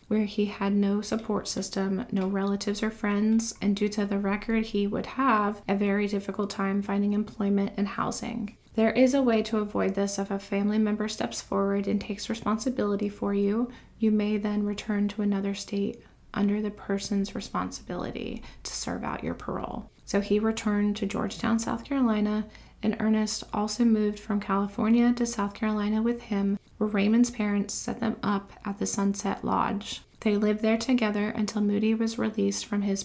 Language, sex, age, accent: English, female, 20-39, American